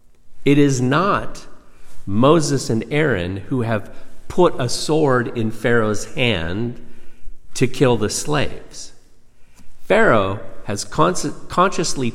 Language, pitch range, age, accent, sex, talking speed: English, 95-130 Hz, 50-69, American, male, 105 wpm